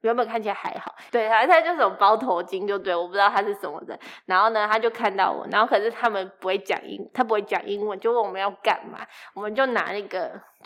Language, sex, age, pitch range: Chinese, female, 20-39, 195-235 Hz